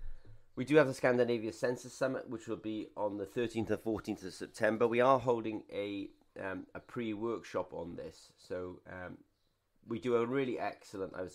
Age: 30-49